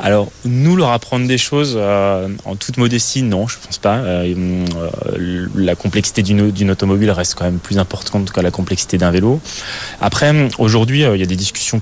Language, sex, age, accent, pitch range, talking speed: French, male, 20-39, French, 100-115 Hz, 205 wpm